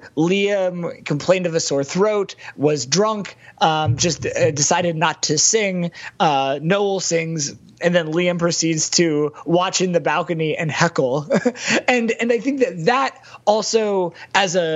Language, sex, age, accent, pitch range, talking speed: English, male, 20-39, American, 150-190 Hz, 155 wpm